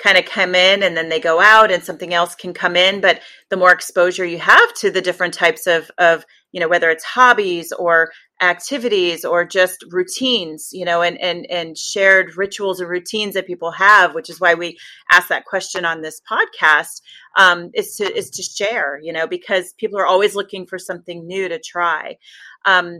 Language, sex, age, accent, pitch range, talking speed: English, female, 30-49, American, 165-195 Hz, 205 wpm